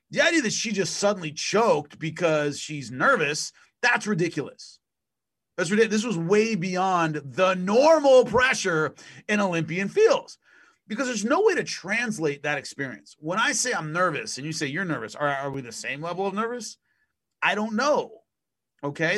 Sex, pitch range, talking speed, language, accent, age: male, 155-220 Hz, 170 wpm, English, American, 30-49